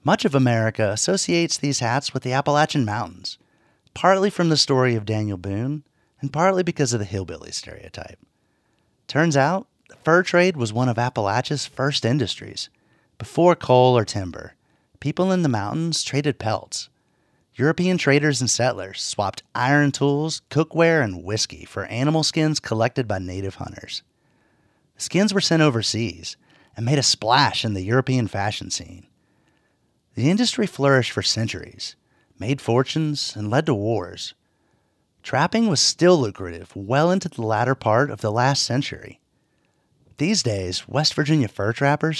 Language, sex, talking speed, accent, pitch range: English, male, 150 wpm, American, 105-150 Hz